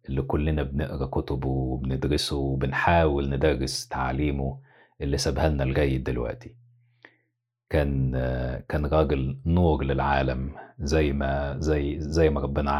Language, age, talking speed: Arabic, 50-69, 115 wpm